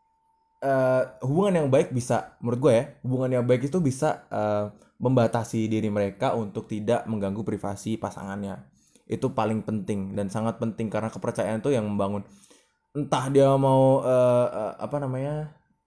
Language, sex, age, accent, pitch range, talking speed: Indonesian, male, 20-39, native, 110-145 Hz, 150 wpm